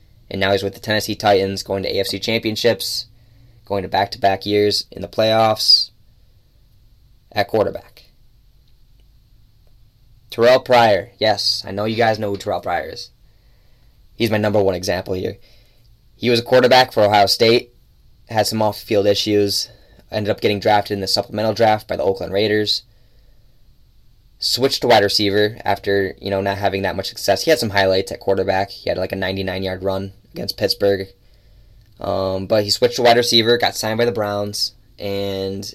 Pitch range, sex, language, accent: 100-115 Hz, male, English, American